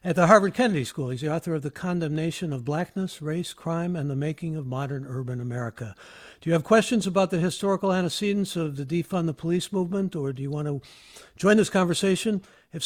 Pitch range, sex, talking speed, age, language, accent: 140-175 Hz, male, 210 wpm, 60-79, English, American